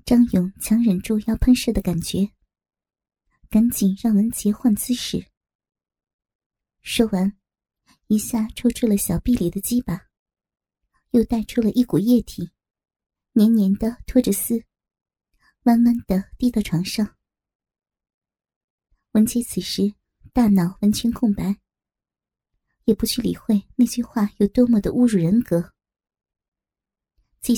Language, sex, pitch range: Chinese, male, 195-235 Hz